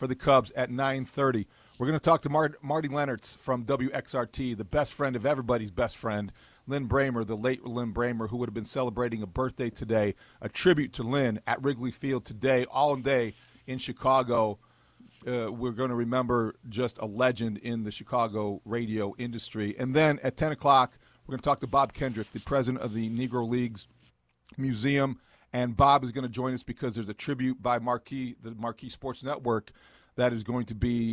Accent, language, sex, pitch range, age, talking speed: American, English, male, 120-140 Hz, 40-59, 195 wpm